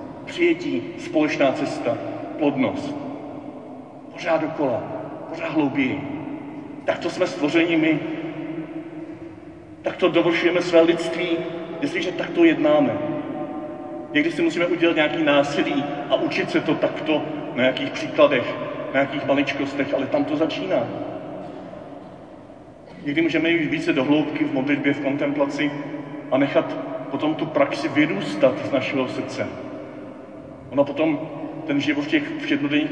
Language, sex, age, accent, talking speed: Czech, male, 40-59, native, 125 wpm